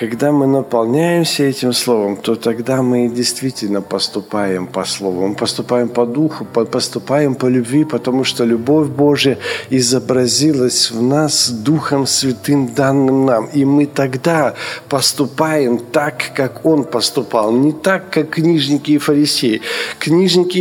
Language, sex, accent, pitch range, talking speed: Ukrainian, male, native, 135-165 Hz, 130 wpm